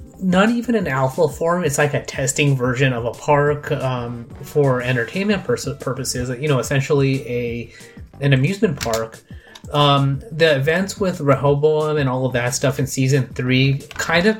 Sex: male